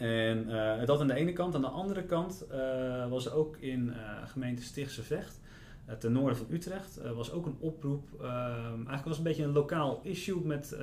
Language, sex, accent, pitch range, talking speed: Dutch, male, Dutch, 115-145 Hz, 220 wpm